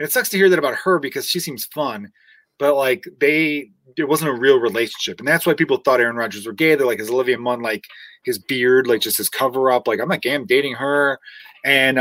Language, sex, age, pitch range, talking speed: English, male, 30-49, 135-190 Hz, 250 wpm